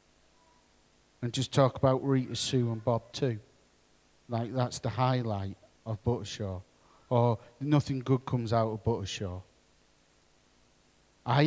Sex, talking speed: male, 120 wpm